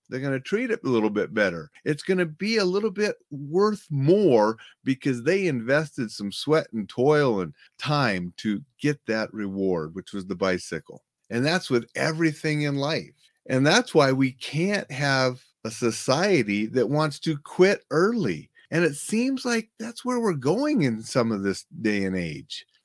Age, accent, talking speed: 40-59, American, 180 wpm